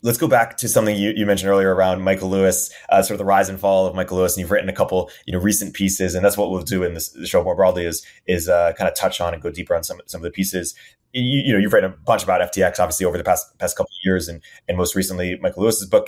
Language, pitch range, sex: English, 95-105 Hz, male